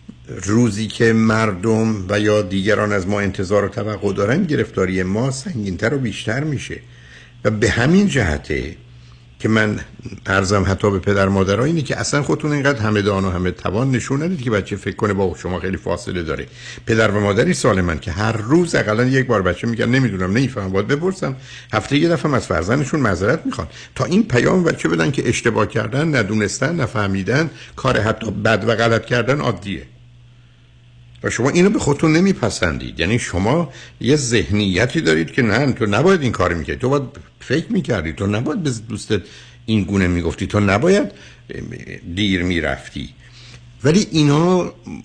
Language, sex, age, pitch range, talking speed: Persian, male, 60-79, 100-130 Hz, 165 wpm